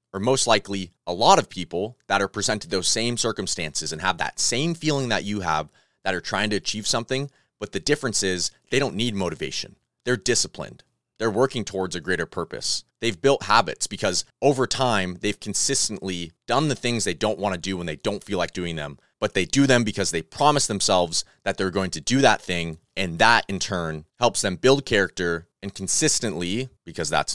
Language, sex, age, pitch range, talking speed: English, male, 30-49, 90-120 Hz, 205 wpm